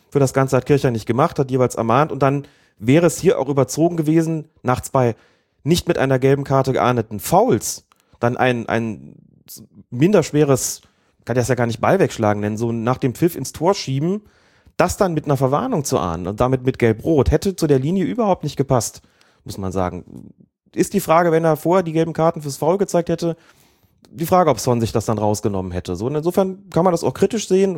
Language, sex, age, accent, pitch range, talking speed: German, male, 30-49, German, 120-165 Hz, 210 wpm